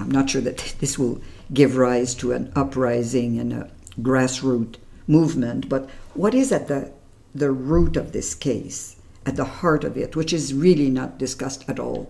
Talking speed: 185 wpm